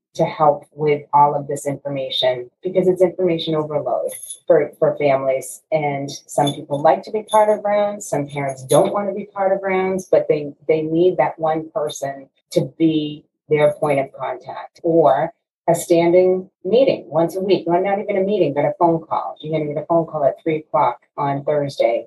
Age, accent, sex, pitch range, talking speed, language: 30-49, American, female, 145-175 Hz, 195 wpm, English